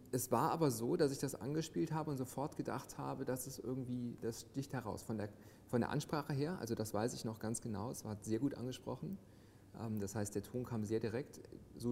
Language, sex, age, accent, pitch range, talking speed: German, male, 30-49, German, 105-125 Hz, 225 wpm